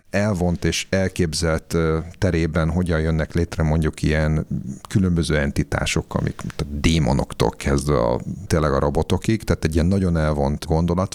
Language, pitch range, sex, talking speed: Hungarian, 75-95 Hz, male, 130 wpm